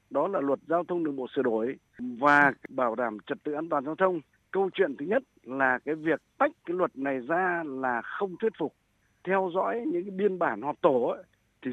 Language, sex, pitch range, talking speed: Vietnamese, male, 135-190 Hz, 220 wpm